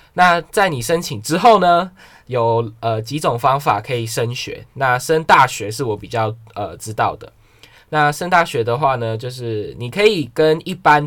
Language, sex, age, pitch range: Chinese, male, 10-29, 110-150 Hz